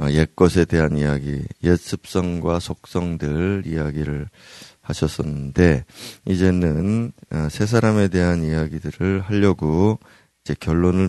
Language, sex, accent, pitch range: Korean, male, native, 80-105 Hz